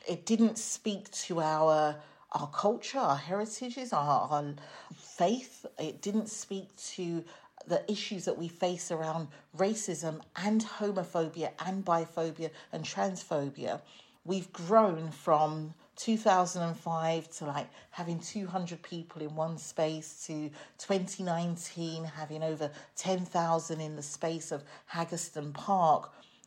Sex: female